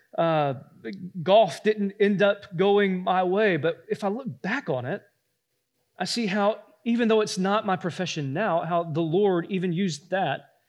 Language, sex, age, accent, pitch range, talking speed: English, male, 30-49, American, 150-225 Hz, 175 wpm